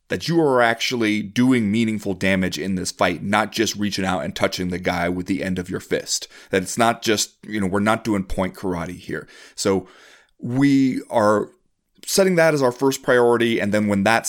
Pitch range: 95-160 Hz